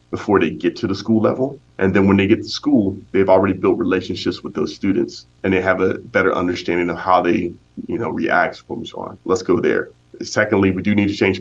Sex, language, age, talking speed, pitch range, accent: male, English, 30-49, 235 wpm, 85-95 Hz, American